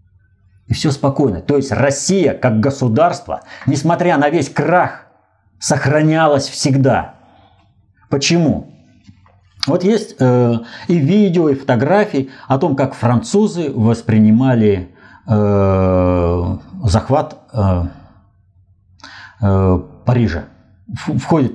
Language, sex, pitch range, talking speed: Russian, male, 95-135 Hz, 90 wpm